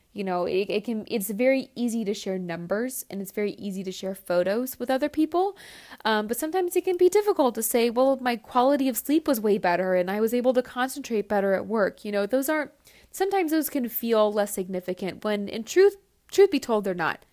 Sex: female